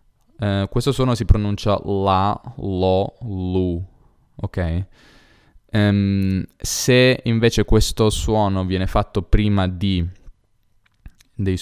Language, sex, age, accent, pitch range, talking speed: Italian, male, 10-29, native, 90-105 Hz, 100 wpm